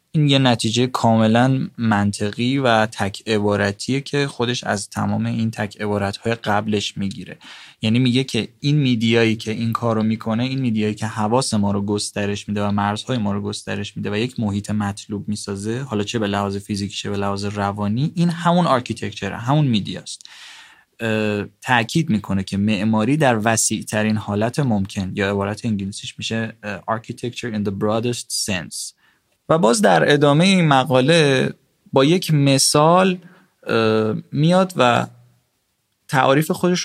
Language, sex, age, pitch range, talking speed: Persian, male, 20-39, 105-135 Hz, 145 wpm